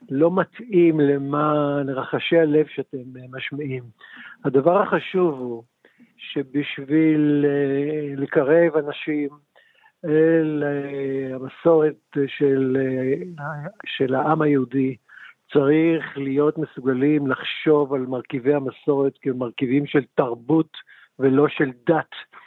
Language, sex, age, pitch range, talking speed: Hebrew, male, 60-79, 140-180 Hz, 90 wpm